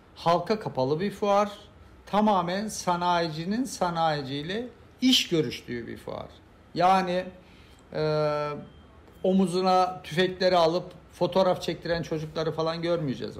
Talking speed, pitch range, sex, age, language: 95 wpm, 125-185 Hz, male, 60-79, Turkish